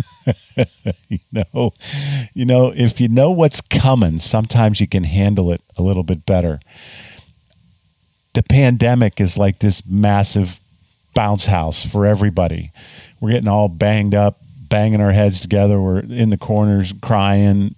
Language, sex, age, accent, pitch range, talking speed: English, male, 40-59, American, 100-130 Hz, 140 wpm